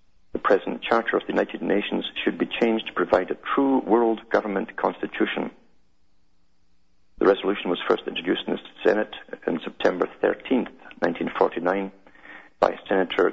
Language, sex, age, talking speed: English, male, 50-69, 140 wpm